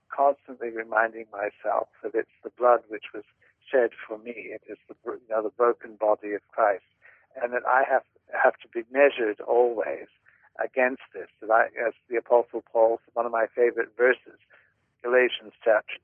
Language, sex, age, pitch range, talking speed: English, male, 60-79, 115-135 Hz, 155 wpm